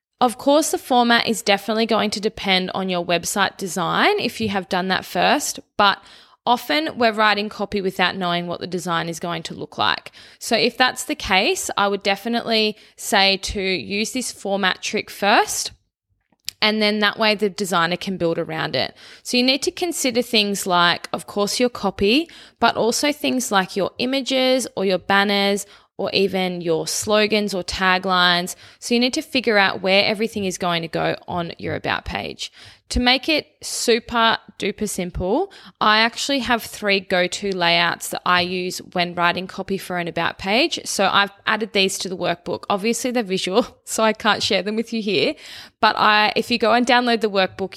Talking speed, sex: 185 wpm, female